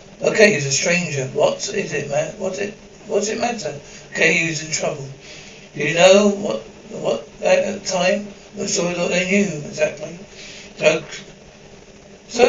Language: English